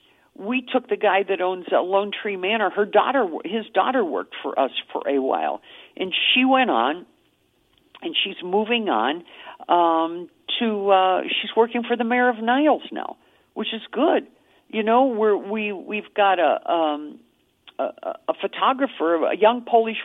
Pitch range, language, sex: 195-260 Hz, Polish, female